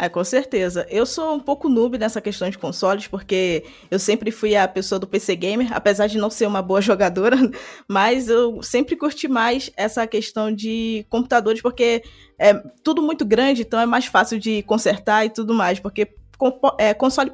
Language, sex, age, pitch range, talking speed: Portuguese, female, 20-39, 205-255 Hz, 185 wpm